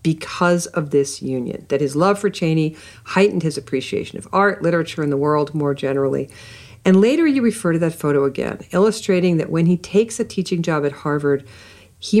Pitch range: 140-195 Hz